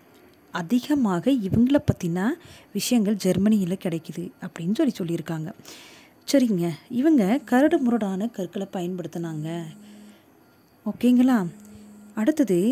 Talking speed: 80 wpm